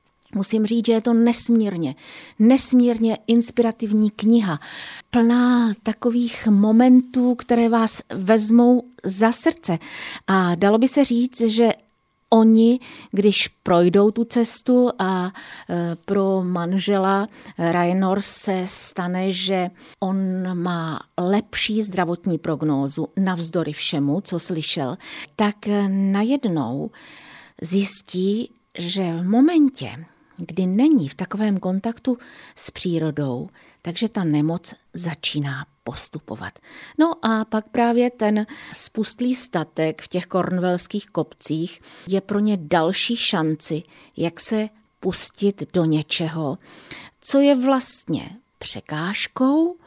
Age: 40-59